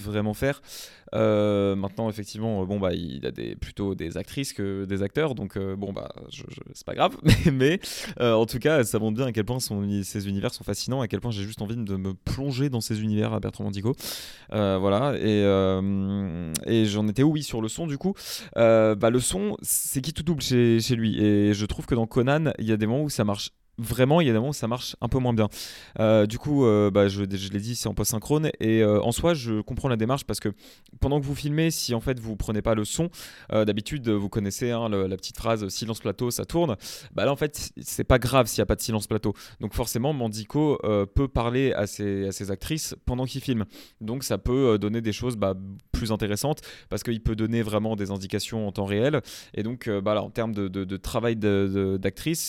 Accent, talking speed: French, 240 wpm